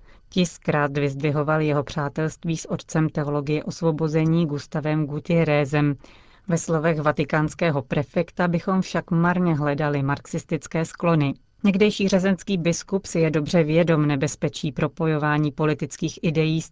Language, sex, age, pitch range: Czech, female, 30-49, 150-175 Hz